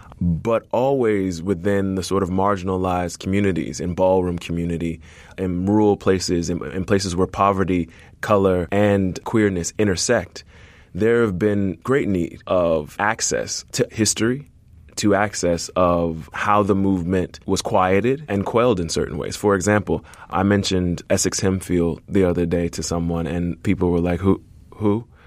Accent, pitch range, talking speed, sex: American, 85-100 Hz, 145 wpm, male